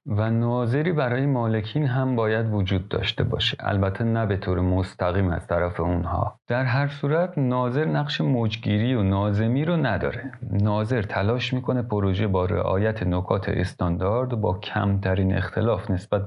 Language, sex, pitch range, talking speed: Persian, male, 95-125 Hz, 150 wpm